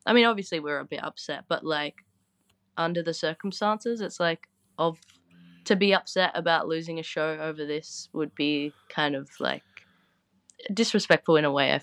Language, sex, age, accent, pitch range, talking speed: English, female, 20-39, Australian, 150-175 Hz, 170 wpm